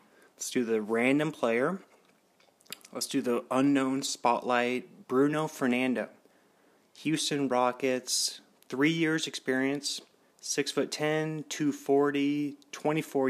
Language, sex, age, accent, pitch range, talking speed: English, male, 30-49, American, 130-150 Hz, 90 wpm